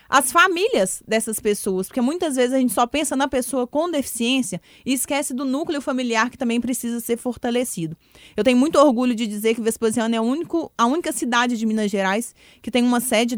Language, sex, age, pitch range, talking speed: Portuguese, female, 20-39, 215-260 Hz, 195 wpm